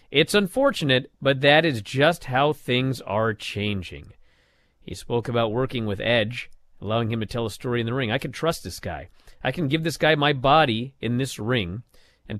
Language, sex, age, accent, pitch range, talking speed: English, male, 40-59, American, 115-160 Hz, 200 wpm